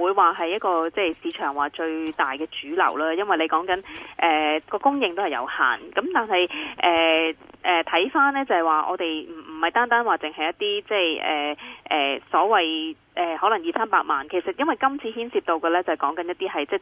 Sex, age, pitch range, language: female, 20-39, 160-230 Hz, Chinese